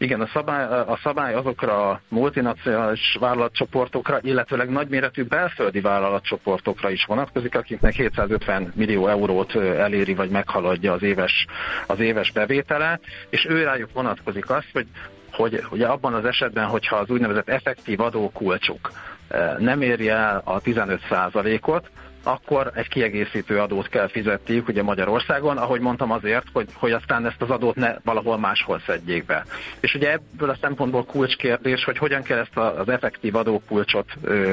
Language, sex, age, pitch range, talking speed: Hungarian, male, 50-69, 105-130 Hz, 145 wpm